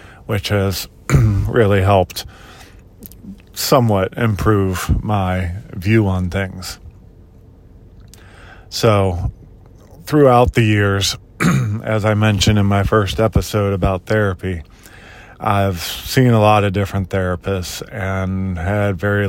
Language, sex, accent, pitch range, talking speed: English, male, American, 95-105 Hz, 105 wpm